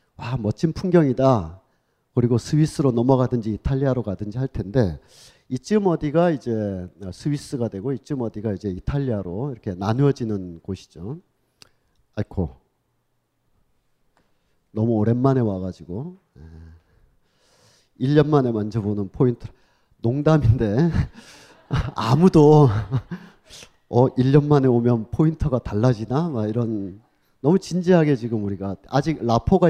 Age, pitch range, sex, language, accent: 40-59, 105-150 Hz, male, Korean, native